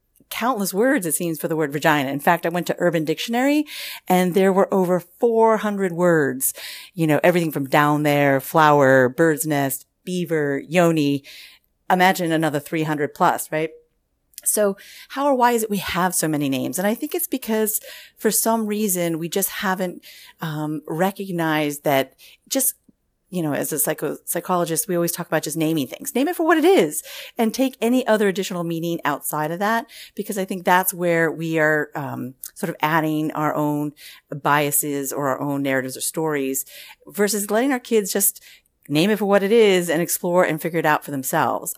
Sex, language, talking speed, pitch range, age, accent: female, English, 185 wpm, 150-195 Hz, 40-59, American